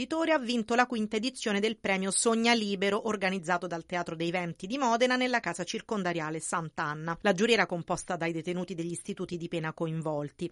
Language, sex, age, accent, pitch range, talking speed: Italian, female, 40-59, native, 175-225 Hz, 175 wpm